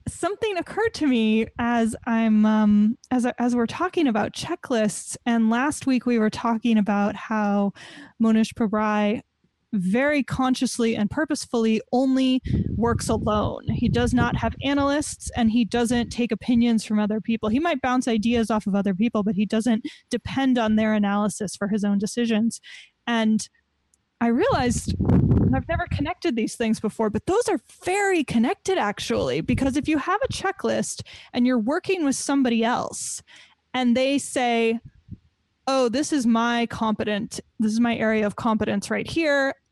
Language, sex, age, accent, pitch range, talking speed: English, female, 10-29, American, 220-260 Hz, 160 wpm